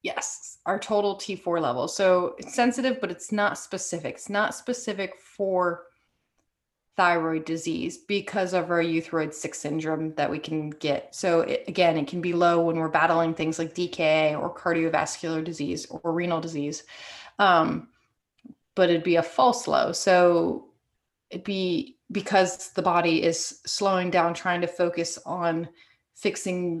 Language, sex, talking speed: English, female, 150 wpm